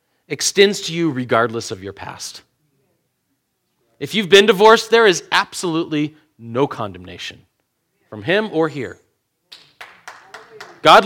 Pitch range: 130-200 Hz